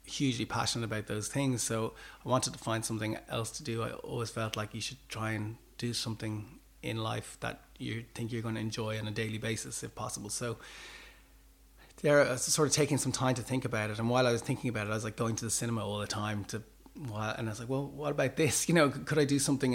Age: 30-49